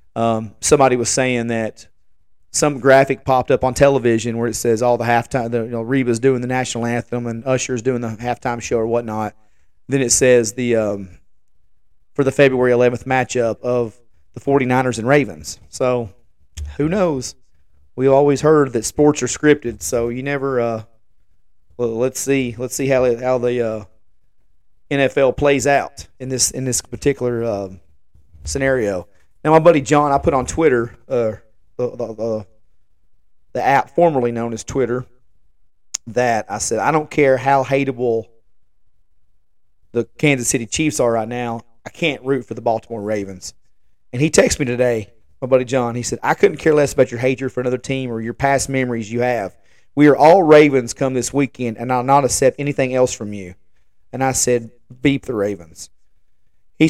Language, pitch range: English, 115-135 Hz